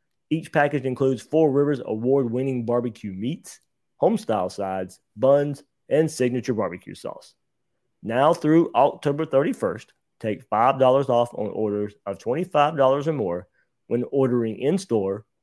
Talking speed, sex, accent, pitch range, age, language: 120 wpm, male, American, 115-150 Hz, 30-49, English